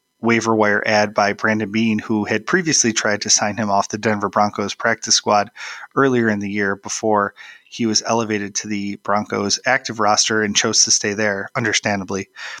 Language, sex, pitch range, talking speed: English, male, 105-115 Hz, 180 wpm